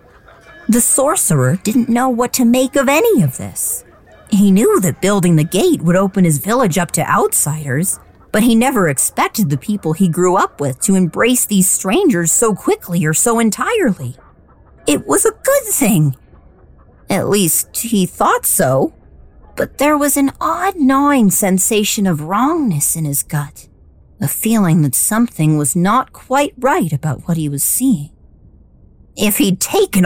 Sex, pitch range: female, 155-235 Hz